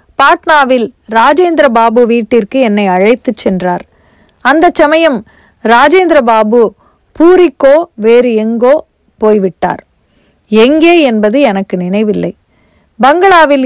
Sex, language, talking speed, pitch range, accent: female, Tamil, 90 wpm, 220-285 Hz, native